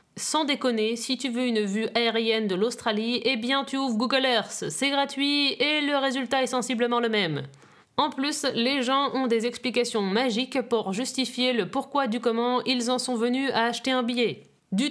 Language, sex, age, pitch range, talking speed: French, female, 30-49, 235-280 Hz, 195 wpm